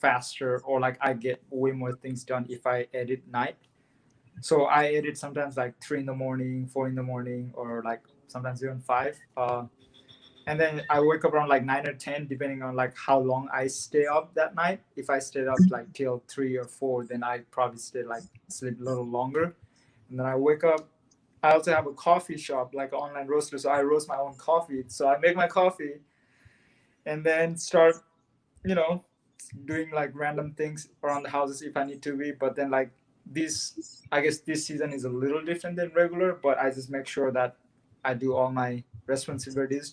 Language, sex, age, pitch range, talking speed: English, male, 20-39, 125-145 Hz, 205 wpm